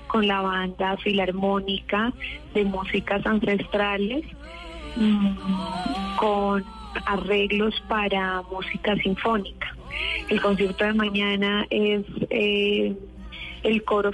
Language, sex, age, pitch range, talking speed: Spanish, female, 30-49, 195-220 Hz, 85 wpm